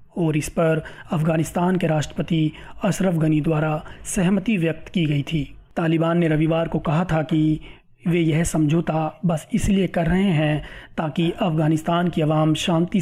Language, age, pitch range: Hindi, 30-49, 155-170 Hz